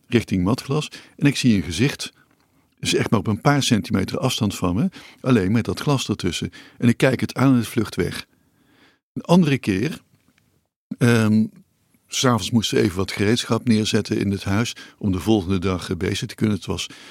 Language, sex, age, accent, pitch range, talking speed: Dutch, male, 60-79, Dutch, 100-130 Hz, 195 wpm